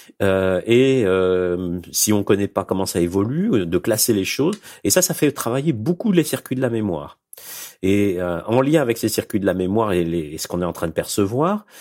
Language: French